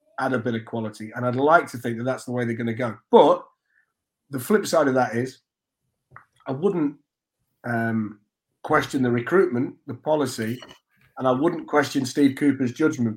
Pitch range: 120-135 Hz